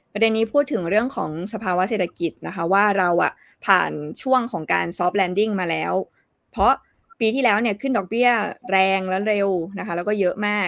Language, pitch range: Thai, 185-230 Hz